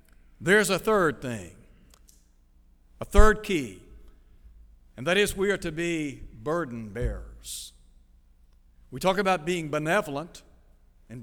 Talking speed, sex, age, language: 120 wpm, male, 60-79, English